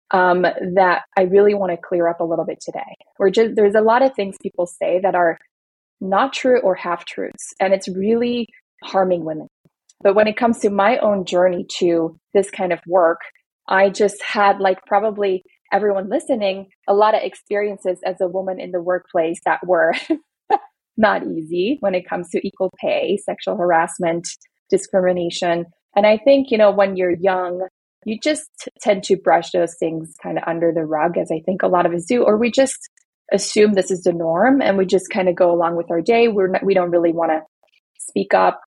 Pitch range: 175-205 Hz